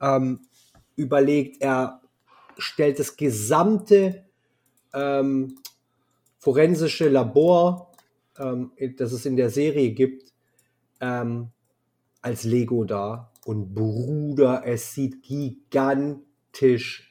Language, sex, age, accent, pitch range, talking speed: German, male, 30-49, German, 120-140 Hz, 90 wpm